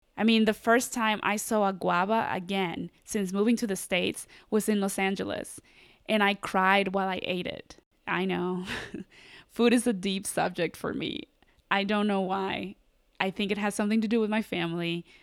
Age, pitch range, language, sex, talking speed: 20-39, 195-240 Hz, English, female, 195 wpm